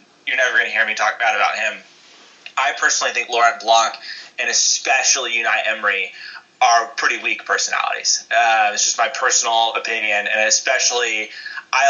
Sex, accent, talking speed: male, American, 160 wpm